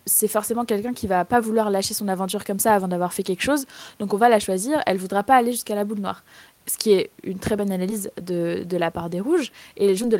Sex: female